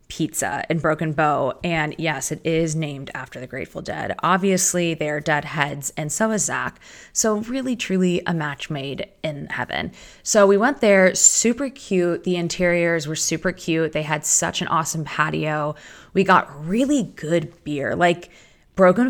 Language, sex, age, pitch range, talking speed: English, female, 20-39, 155-195 Hz, 165 wpm